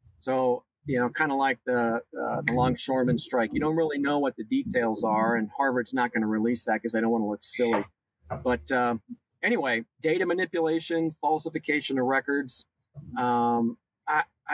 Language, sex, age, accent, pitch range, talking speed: English, male, 40-59, American, 120-150 Hz, 180 wpm